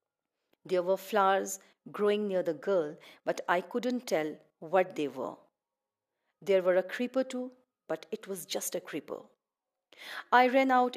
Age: 50-69